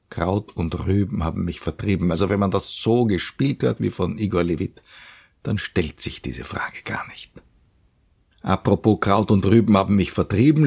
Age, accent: 50-69, Austrian